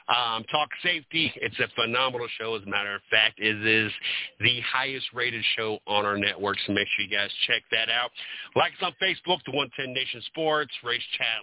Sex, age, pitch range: male, 40-59, 110-140 Hz